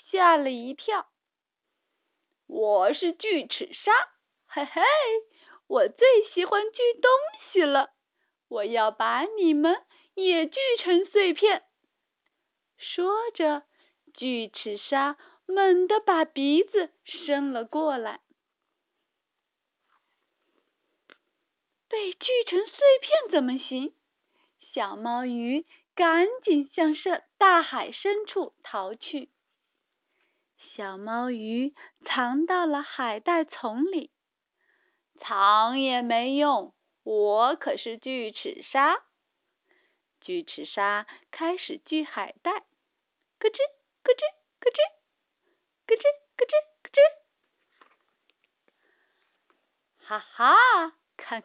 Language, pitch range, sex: Chinese, 265-365 Hz, female